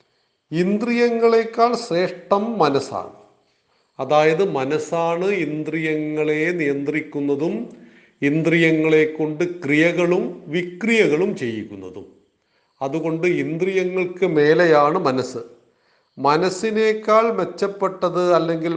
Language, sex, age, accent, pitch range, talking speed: Malayalam, male, 40-59, native, 140-180 Hz, 60 wpm